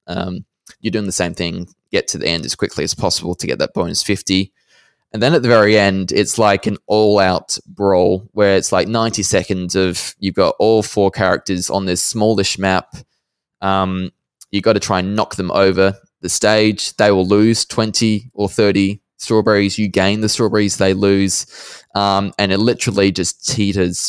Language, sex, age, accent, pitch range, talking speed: English, male, 20-39, Australian, 90-100 Hz, 185 wpm